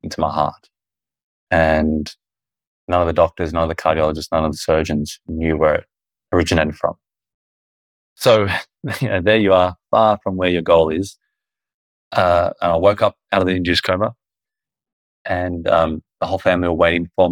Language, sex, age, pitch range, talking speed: English, male, 20-39, 80-90 Hz, 175 wpm